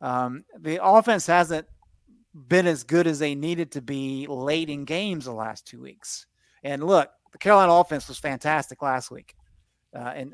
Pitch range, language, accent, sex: 140-175 Hz, English, American, male